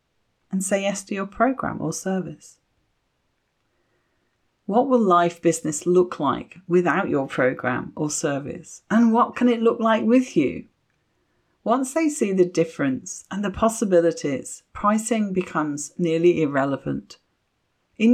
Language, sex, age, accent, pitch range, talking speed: English, female, 40-59, British, 160-225 Hz, 130 wpm